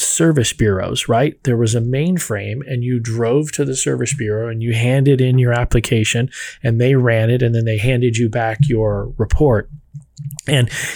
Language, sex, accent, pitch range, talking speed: English, male, American, 115-140 Hz, 180 wpm